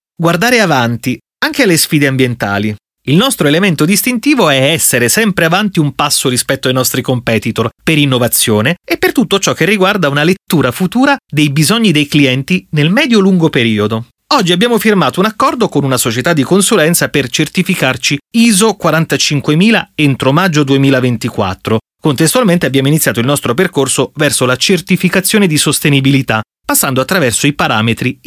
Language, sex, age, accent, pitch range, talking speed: Italian, male, 30-49, native, 120-180 Hz, 150 wpm